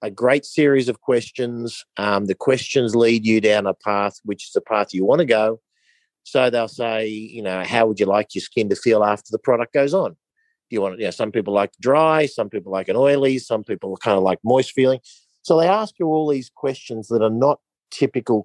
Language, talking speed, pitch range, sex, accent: English, 235 wpm, 100-140 Hz, male, Australian